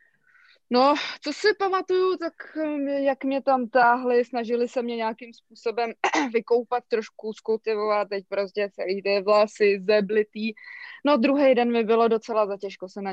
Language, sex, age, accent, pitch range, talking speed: Czech, female, 20-39, native, 215-260 Hz, 140 wpm